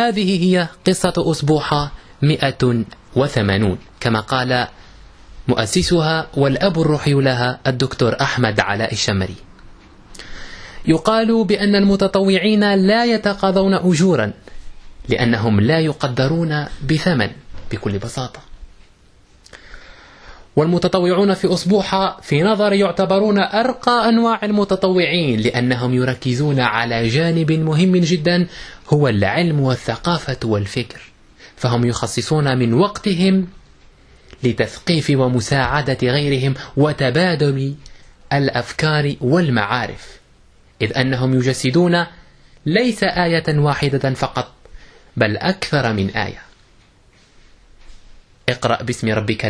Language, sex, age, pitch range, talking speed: Arabic, male, 20-39, 120-175 Hz, 85 wpm